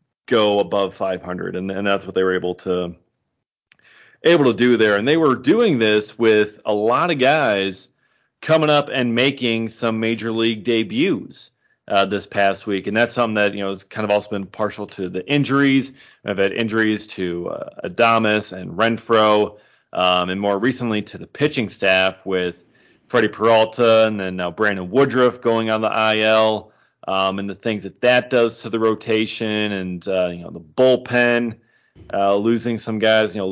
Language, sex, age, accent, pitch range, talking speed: English, male, 30-49, American, 100-115 Hz, 185 wpm